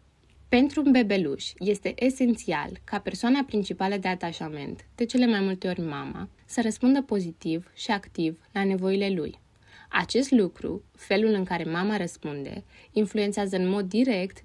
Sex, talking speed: female, 145 wpm